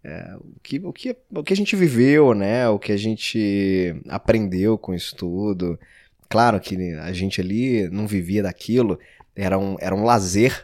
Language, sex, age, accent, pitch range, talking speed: Portuguese, male, 20-39, Brazilian, 95-120 Hz, 150 wpm